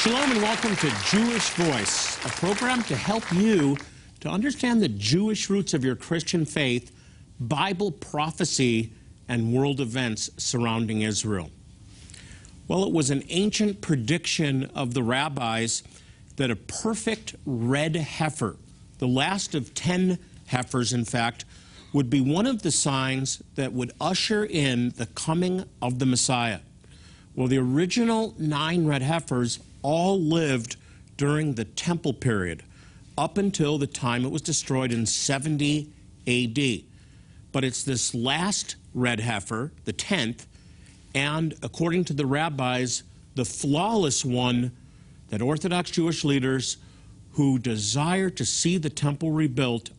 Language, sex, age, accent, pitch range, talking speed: English, male, 50-69, American, 120-165 Hz, 135 wpm